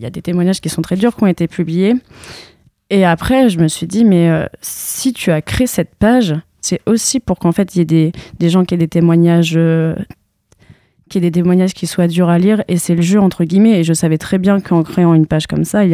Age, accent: 20-39, French